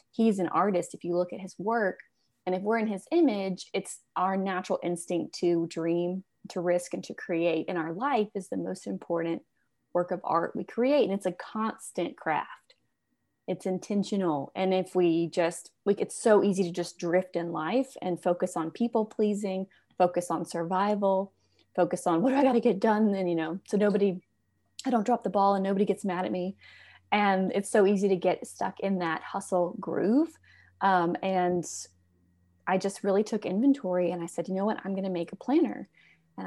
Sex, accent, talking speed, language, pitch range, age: female, American, 200 wpm, English, 175-205 Hz, 20-39